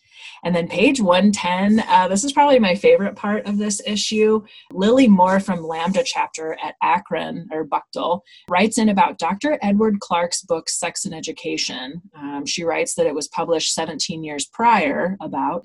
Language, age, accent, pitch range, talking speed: English, 30-49, American, 160-225 Hz, 170 wpm